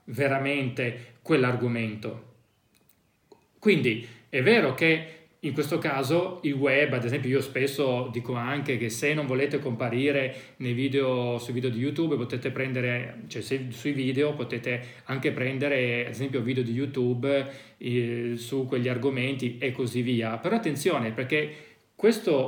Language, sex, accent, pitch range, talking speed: Italian, male, native, 120-150 Hz, 140 wpm